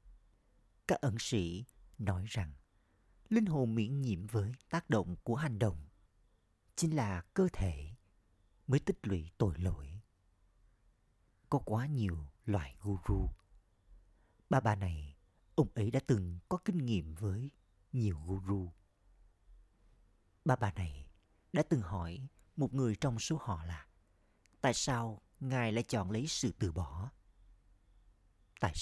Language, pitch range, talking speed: Vietnamese, 90-120 Hz, 135 wpm